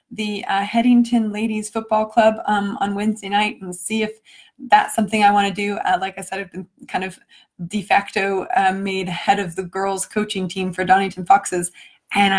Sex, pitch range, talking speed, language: female, 190-240 Hz, 200 wpm, English